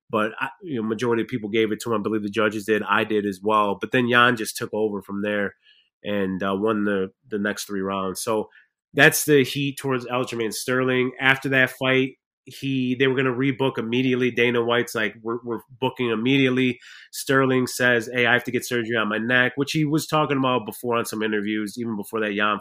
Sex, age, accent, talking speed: male, 30-49, American, 220 wpm